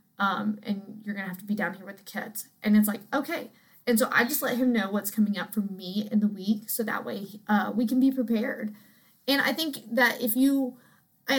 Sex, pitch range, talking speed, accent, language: female, 205-240 Hz, 250 wpm, American, English